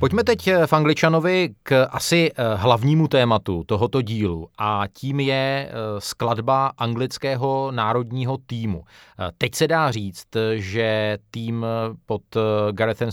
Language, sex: Czech, male